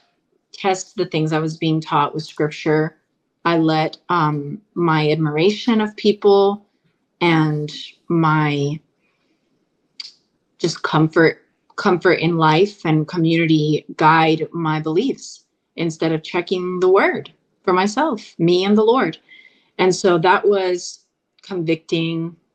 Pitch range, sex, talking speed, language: 155-195 Hz, female, 115 wpm, English